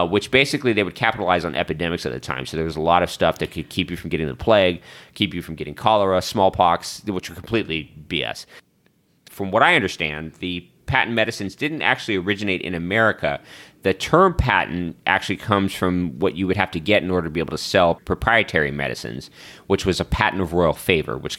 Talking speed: 215 wpm